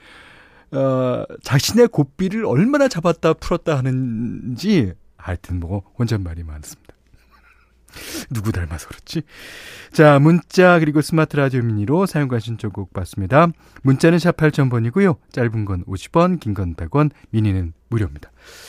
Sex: male